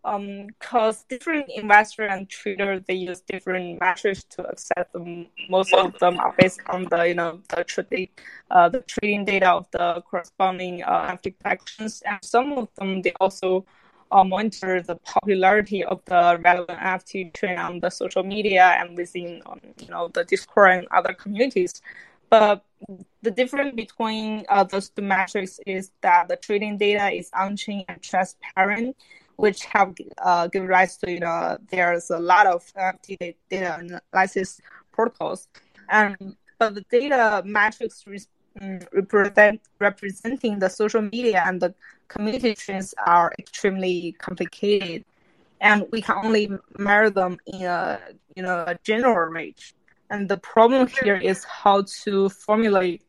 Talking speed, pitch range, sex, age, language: 145 wpm, 180-210 Hz, female, 10-29, English